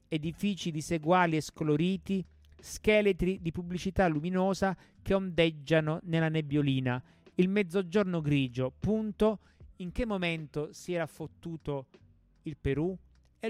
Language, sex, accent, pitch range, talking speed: Italian, male, native, 140-170 Hz, 110 wpm